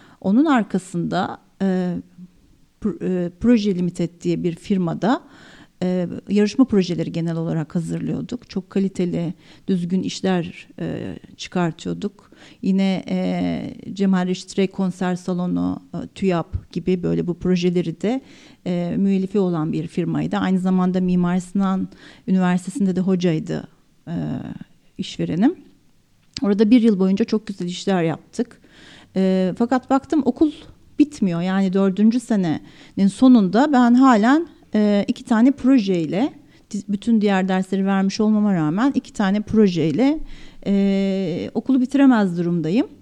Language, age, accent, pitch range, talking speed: Turkish, 50-69, native, 180-240 Hz, 115 wpm